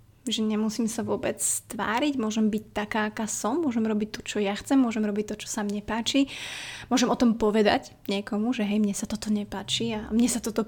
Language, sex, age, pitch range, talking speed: Slovak, female, 20-39, 205-235 Hz, 215 wpm